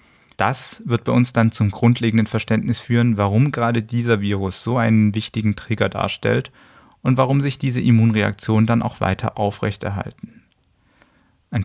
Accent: German